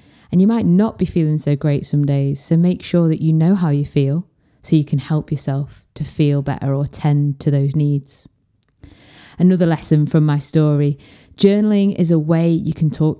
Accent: British